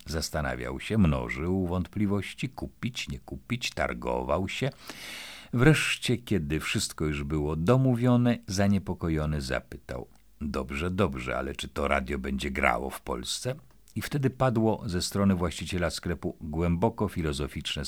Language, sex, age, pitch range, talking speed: Polish, male, 50-69, 75-115 Hz, 120 wpm